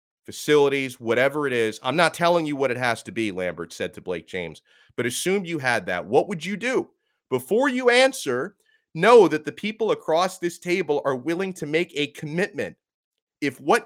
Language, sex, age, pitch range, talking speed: English, male, 30-49, 110-180 Hz, 195 wpm